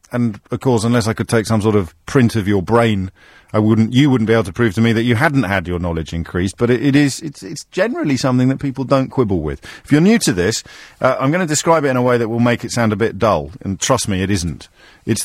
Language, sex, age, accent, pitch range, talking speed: English, male, 40-59, British, 100-130 Hz, 285 wpm